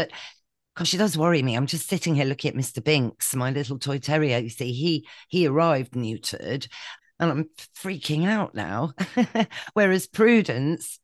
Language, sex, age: English, female, 40-59